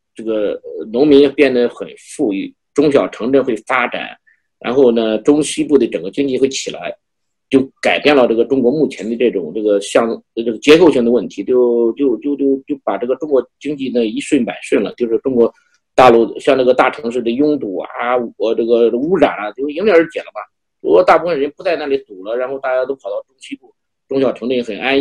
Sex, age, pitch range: male, 50-69, 125-185 Hz